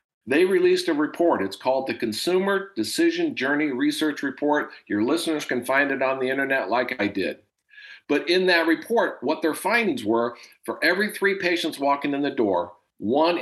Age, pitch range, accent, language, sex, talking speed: 50-69, 135-185 Hz, American, English, male, 180 wpm